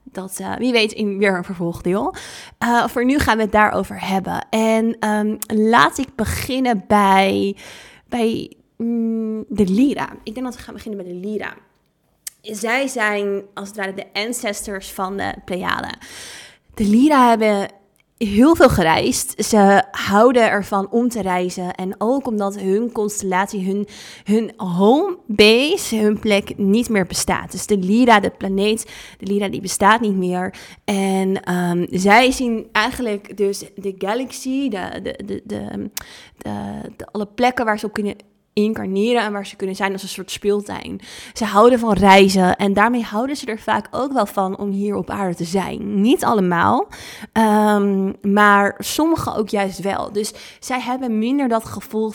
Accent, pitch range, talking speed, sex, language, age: Dutch, 195-225 Hz, 165 wpm, female, Dutch, 20-39